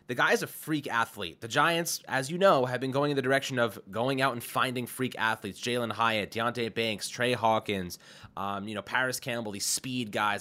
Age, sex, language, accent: 20-39, male, English, American